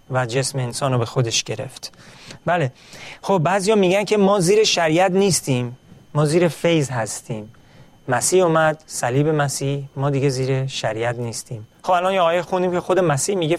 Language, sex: Persian, male